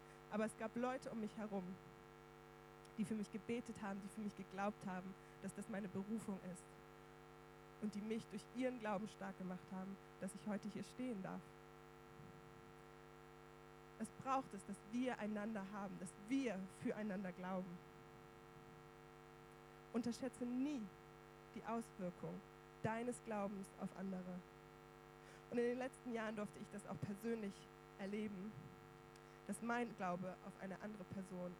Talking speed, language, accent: 140 wpm, German, German